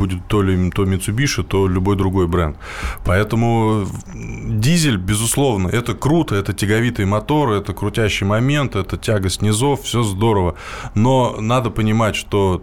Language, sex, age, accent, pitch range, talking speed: Russian, male, 20-39, native, 95-110 Hz, 140 wpm